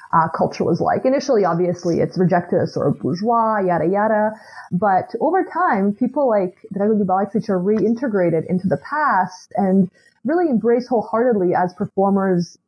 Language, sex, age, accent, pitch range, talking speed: English, female, 20-39, American, 180-225 Hz, 150 wpm